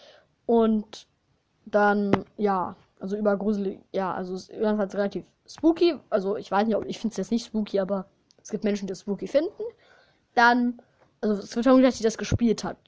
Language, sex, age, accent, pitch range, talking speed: German, female, 10-29, German, 200-245 Hz, 195 wpm